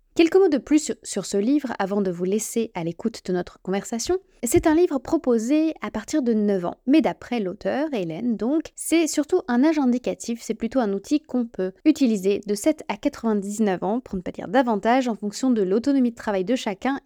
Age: 20-39